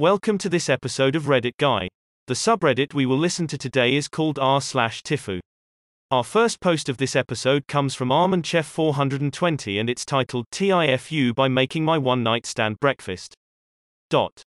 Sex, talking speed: male, 160 wpm